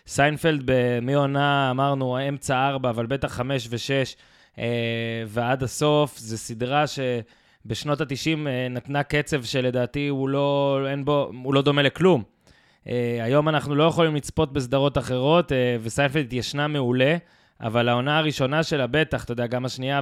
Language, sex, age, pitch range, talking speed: Hebrew, male, 20-39, 125-155 Hz, 125 wpm